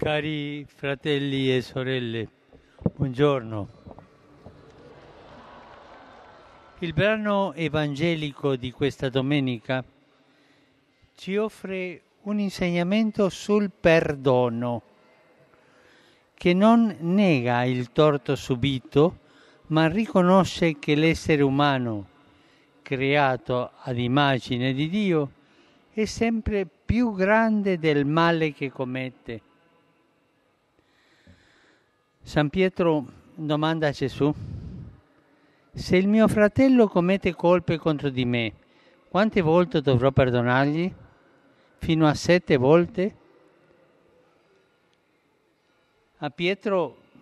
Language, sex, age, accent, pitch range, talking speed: Italian, male, 60-79, native, 130-175 Hz, 85 wpm